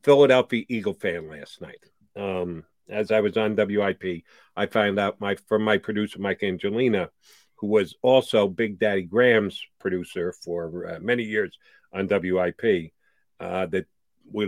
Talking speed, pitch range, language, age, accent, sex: 150 wpm, 95-120 Hz, English, 50-69, American, male